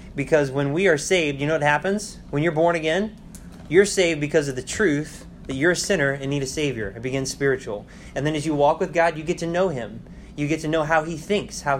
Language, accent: English, American